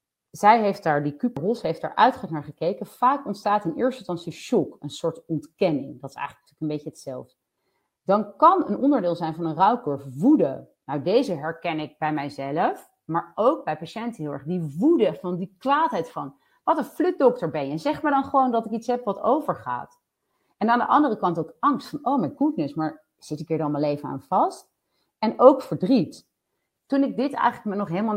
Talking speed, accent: 205 wpm, Dutch